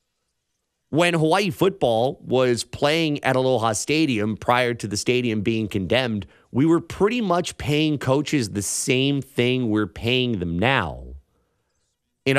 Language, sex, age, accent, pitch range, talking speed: English, male, 30-49, American, 115-180 Hz, 135 wpm